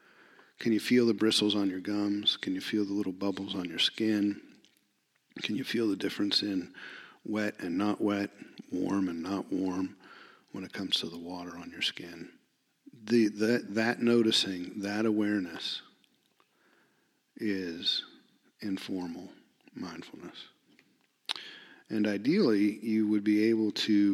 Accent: American